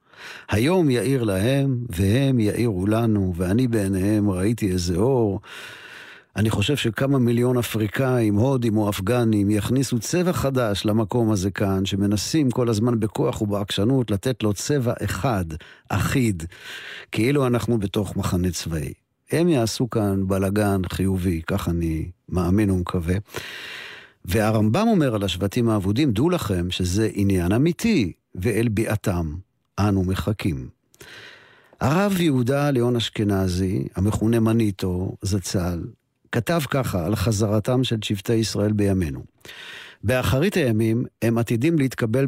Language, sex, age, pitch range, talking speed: Hebrew, male, 50-69, 100-135 Hz, 120 wpm